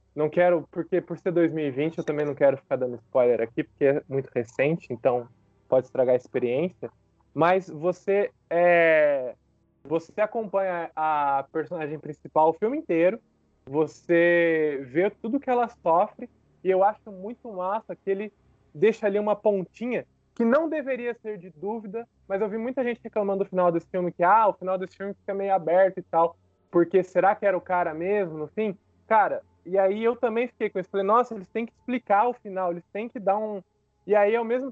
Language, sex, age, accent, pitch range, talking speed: Portuguese, male, 20-39, Brazilian, 165-225 Hz, 195 wpm